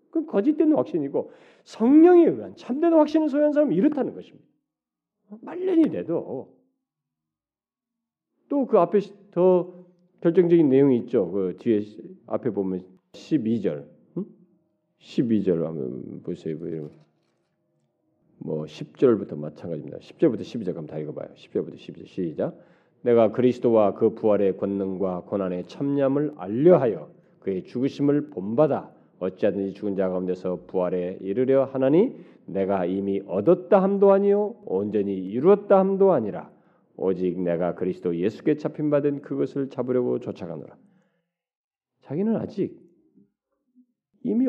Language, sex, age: Korean, male, 40-59